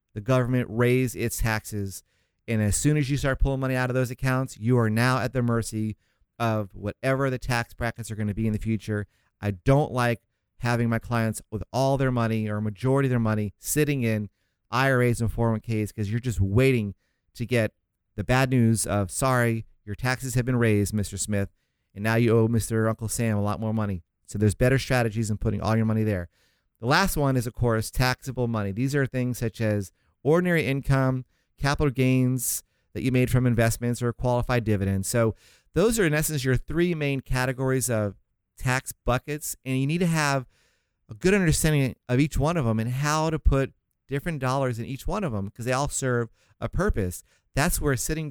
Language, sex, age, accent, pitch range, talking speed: English, male, 30-49, American, 105-130 Hz, 205 wpm